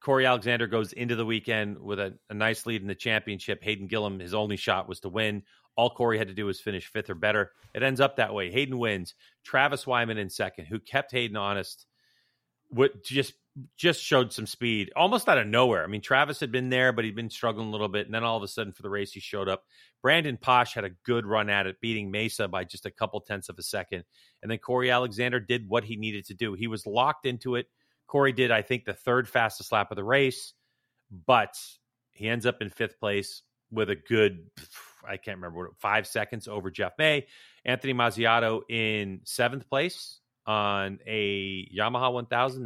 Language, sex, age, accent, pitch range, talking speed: English, male, 40-59, American, 105-125 Hz, 210 wpm